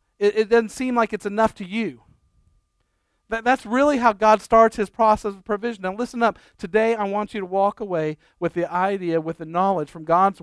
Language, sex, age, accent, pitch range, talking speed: English, male, 40-59, American, 175-220 Hz, 200 wpm